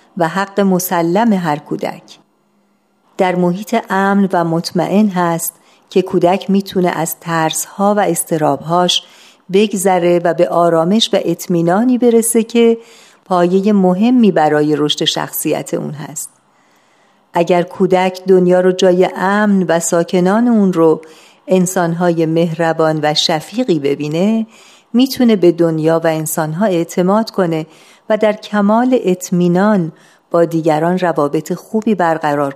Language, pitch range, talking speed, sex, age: Persian, 165-200 Hz, 120 wpm, female, 50-69